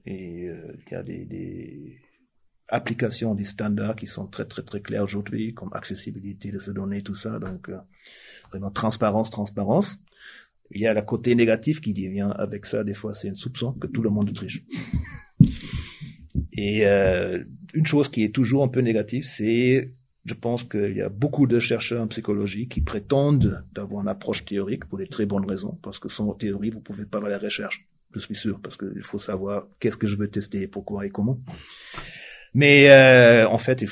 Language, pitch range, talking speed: French, 100-120 Hz, 195 wpm